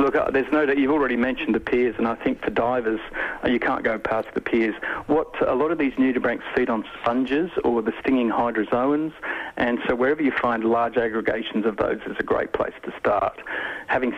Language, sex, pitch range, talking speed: English, male, 110-130 Hz, 205 wpm